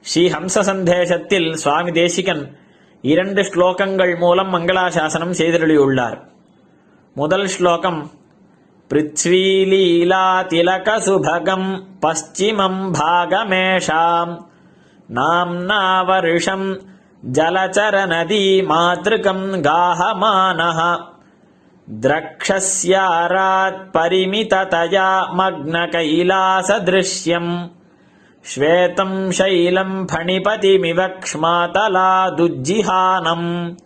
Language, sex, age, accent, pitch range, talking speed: Tamil, male, 20-39, native, 170-190 Hz, 35 wpm